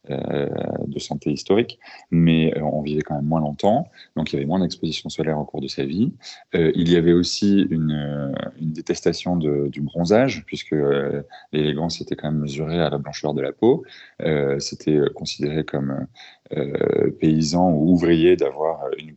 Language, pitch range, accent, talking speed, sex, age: French, 75-85 Hz, French, 190 wpm, male, 30-49